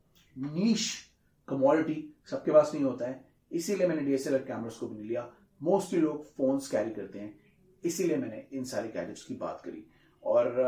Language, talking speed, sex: Hindi, 155 wpm, male